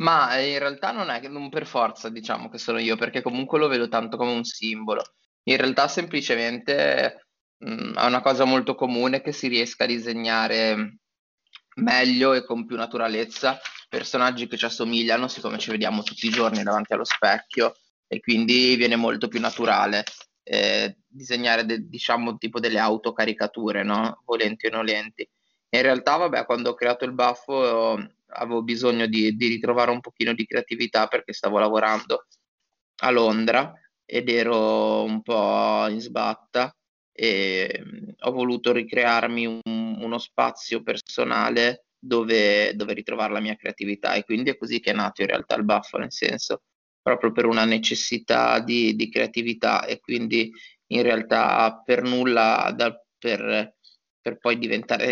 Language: Italian